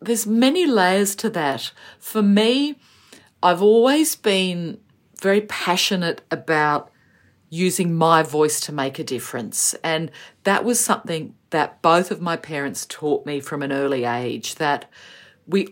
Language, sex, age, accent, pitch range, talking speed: English, female, 50-69, Australian, 145-185 Hz, 140 wpm